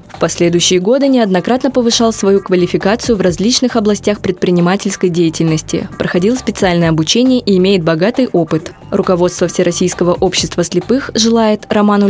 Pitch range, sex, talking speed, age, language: 165-200 Hz, female, 125 wpm, 20-39, Russian